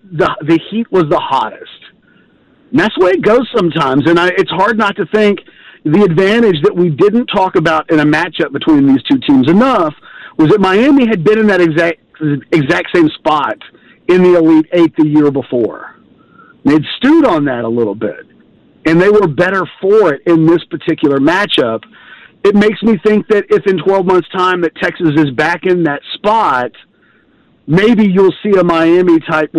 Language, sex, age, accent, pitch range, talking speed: English, male, 40-59, American, 155-190 Hz, 185 wpm